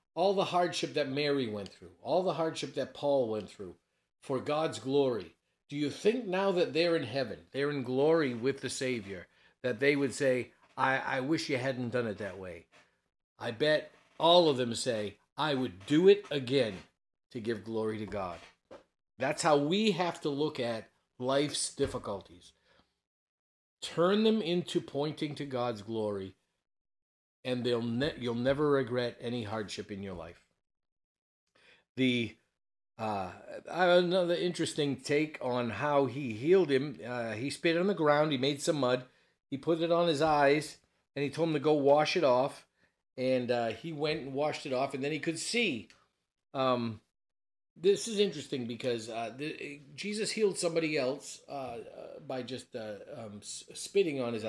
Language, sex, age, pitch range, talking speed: English, male, 50-69, 120-160 Hz, 170 wpm